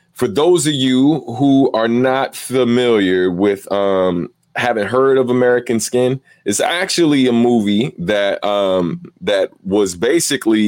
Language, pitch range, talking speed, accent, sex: English, 100-125 Hz, 135 wpm, American, male